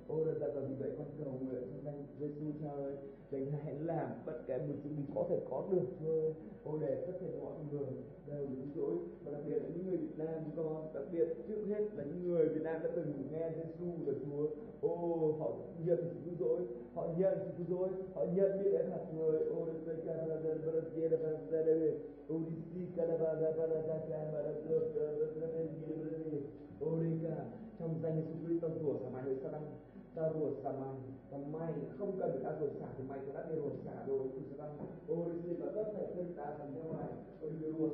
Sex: male